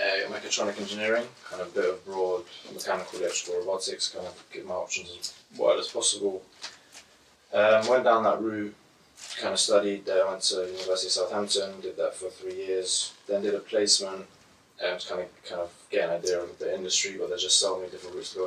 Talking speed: 210 wpm